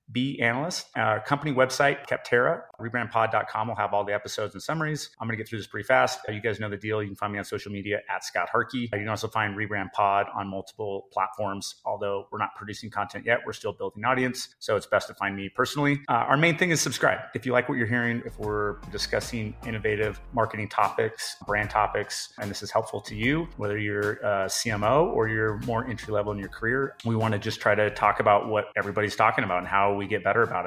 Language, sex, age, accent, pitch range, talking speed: English, male, 30-49, American, 100-120 Hz, 235 wpm